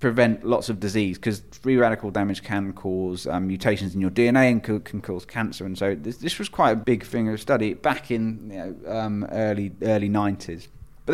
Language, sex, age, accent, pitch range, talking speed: English, male, 20-39, British, 100-130 Hz, 210 wpm